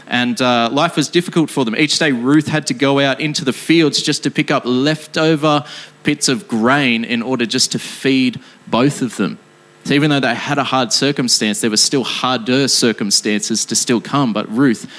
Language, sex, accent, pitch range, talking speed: English, male, Australian, 115-140 Hz, 205 wpm